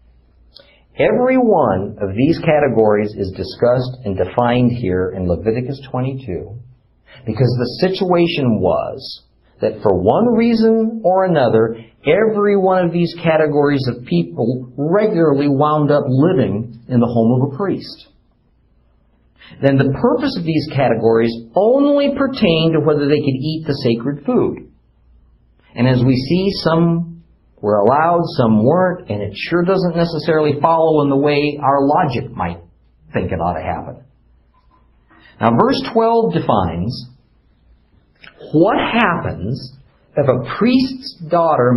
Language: English